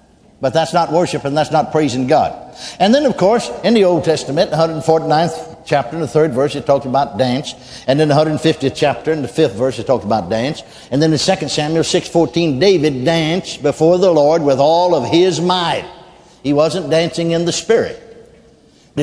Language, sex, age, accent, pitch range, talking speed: English, male, 60-79, American, 140-185 Hz, 200 wpm